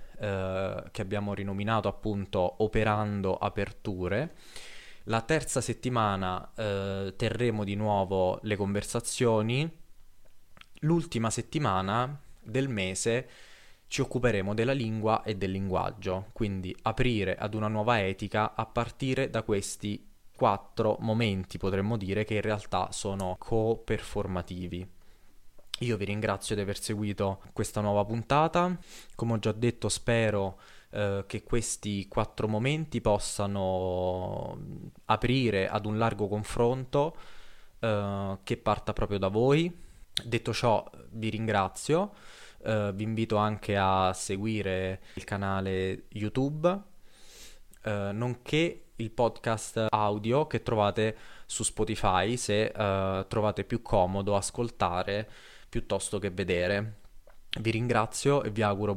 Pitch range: 100-115 Hz